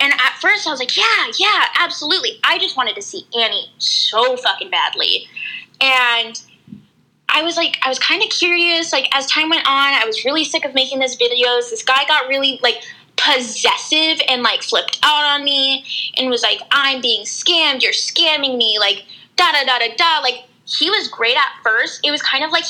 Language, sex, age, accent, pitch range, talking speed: English, female, 10-29, American, 250-330 Hz, 195 wpm